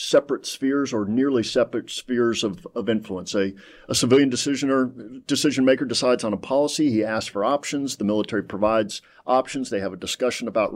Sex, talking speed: male, 180 wpm